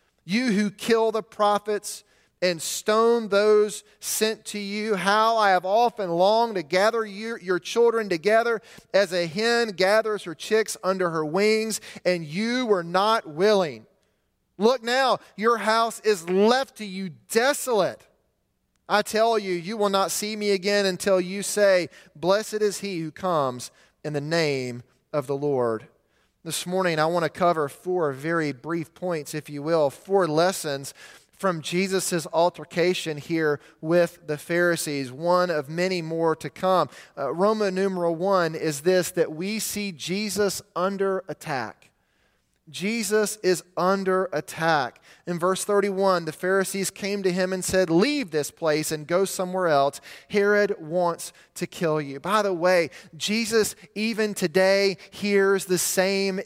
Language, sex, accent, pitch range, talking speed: English, male, American, 170-215 Hz, 150 wpm